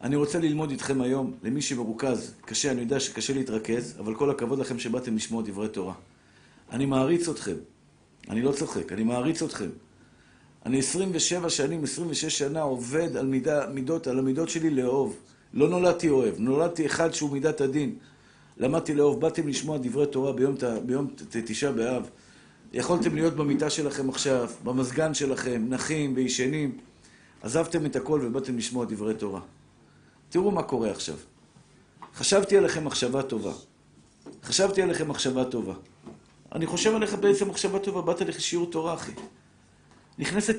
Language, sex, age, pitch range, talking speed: Hebrew, male, 50-69, 135-200 Hz, 150 wpm